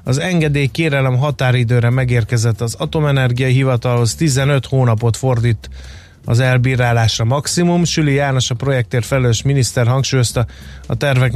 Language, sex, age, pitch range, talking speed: Hungarian, male, 30-49, 115-145 Hz, 115 wpm